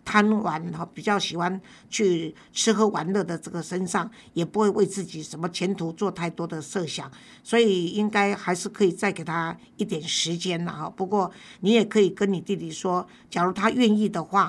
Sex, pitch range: female, 175-215 Hz